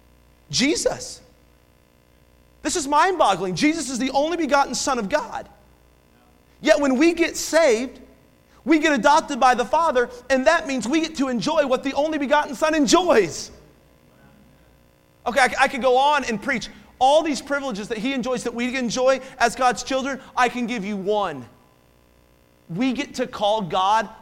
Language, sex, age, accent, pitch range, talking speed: English, male, 30-49, American, 200-275 Hz, 160 wpm